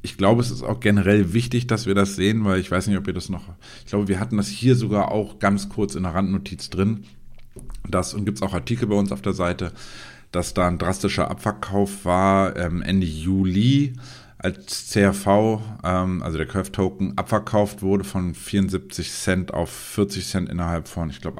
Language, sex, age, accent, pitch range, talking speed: German, male, 50-69, German, 90-105 Hz, 200 wpm